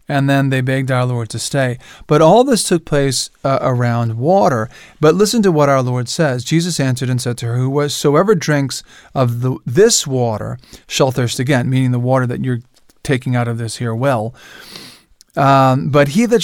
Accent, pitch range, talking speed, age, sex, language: American, 125-155 Hz, 185 wpm, 40-59, male, English